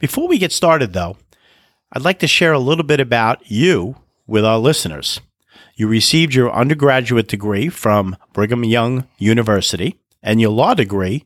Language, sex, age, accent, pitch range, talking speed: English, male, 40-59, American, 105-150 Hz, 160 wpm